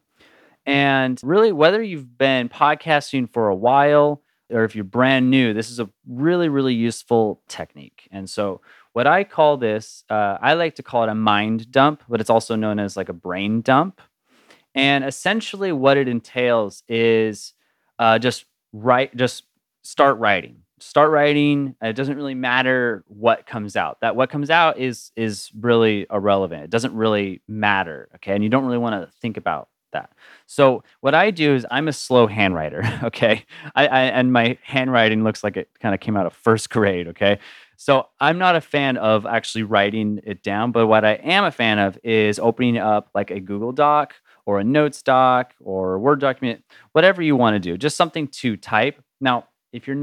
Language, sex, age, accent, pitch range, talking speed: English, male, 20-39, American, 110-140 Hz, 190 wpm